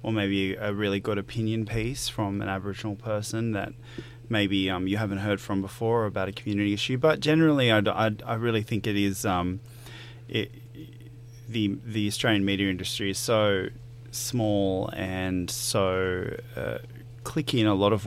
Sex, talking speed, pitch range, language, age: male, 155 wpm, 100-120 Hz, English, 20-39